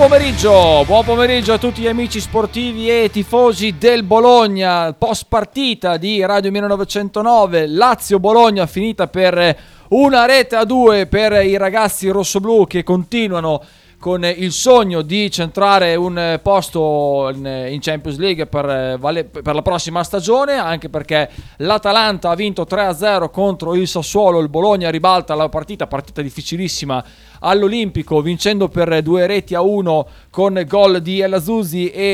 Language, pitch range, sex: Italian, 170-215 Hz, male